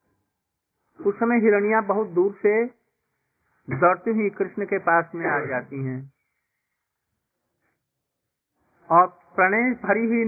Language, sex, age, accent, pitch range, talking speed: Hindi, male, 50-69, native, 155-210 Hz, 110 wpm